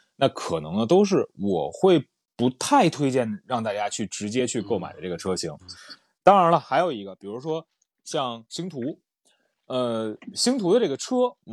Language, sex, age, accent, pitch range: Chinese, male, 20-39, native, 125-205 Hz